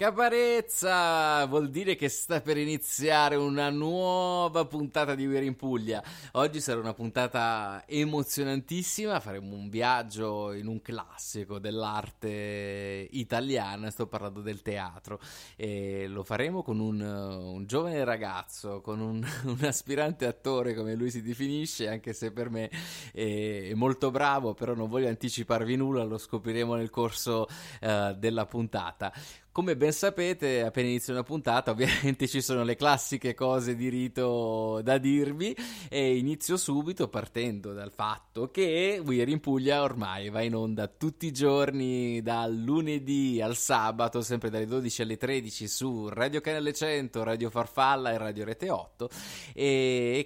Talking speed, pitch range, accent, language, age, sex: 145 wpm, 110-140 Hz, native, Italian, 20-39, male